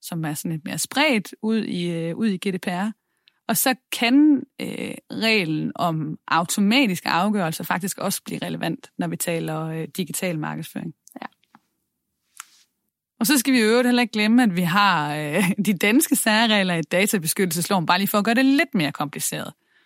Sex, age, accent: female, 30-49, native